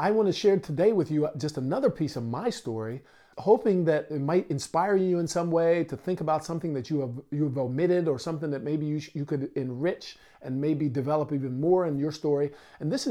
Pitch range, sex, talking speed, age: 135-175 Hz, male, 225 wpm, 50-69